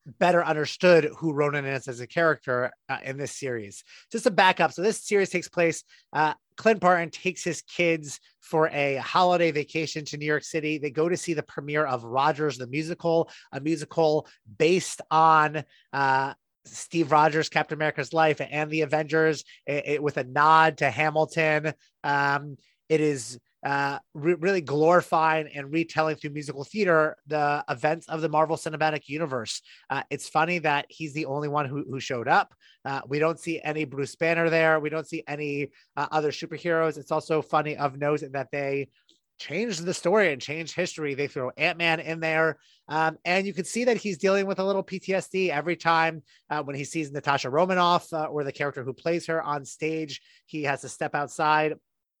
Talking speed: 185 wpm